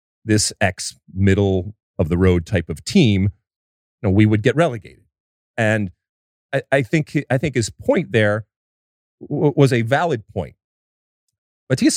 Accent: American